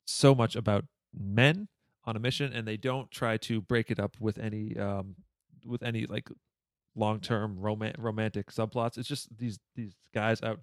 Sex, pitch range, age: male, 105-130 Hz, 30-49